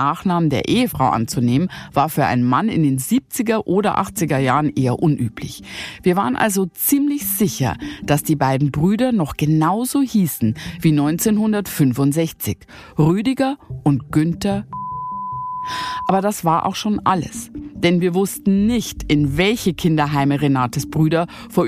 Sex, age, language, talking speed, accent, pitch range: female, 50-69, German, 135 wpm, German, 140-210 Hz